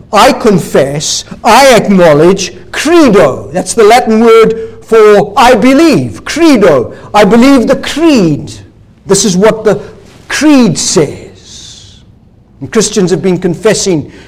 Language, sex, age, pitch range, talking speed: English, male, 60-79, 180-245 Hz, 120 wpm